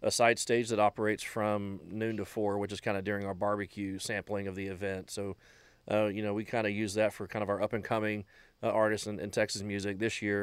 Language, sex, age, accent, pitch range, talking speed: English, male, 30-49, American, 95-105 Hz, 255 wpm